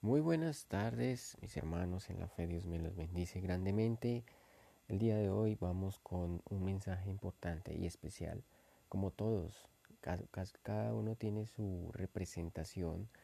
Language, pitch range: English, 85-100 Hz